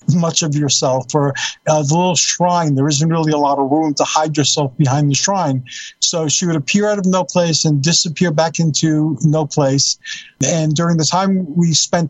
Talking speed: 205 wpm